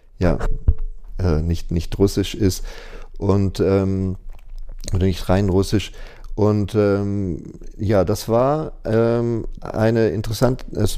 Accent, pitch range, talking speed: German, 95-115 Hz, 110 wpm